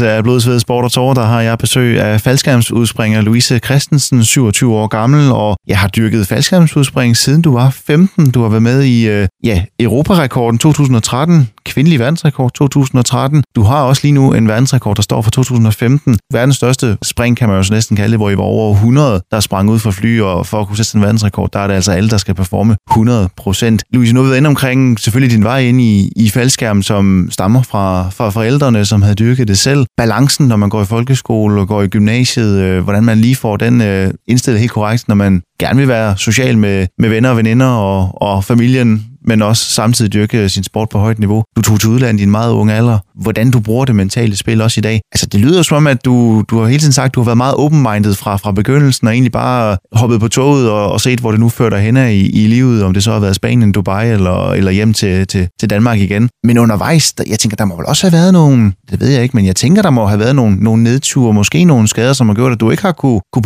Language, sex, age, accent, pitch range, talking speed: Danish, male, 20-39, native, 105-130 Hz, 240 wpm